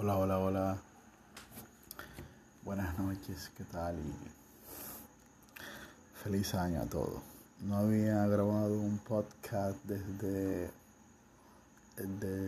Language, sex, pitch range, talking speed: Spanish, male, 90-100 Hz, 90 wpm